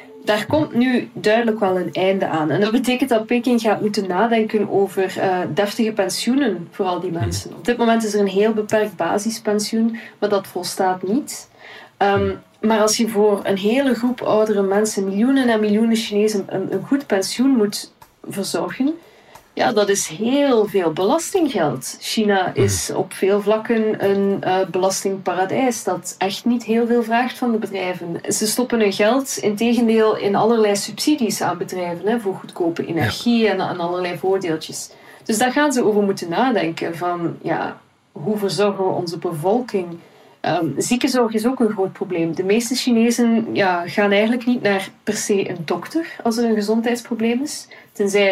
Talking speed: 165 wpm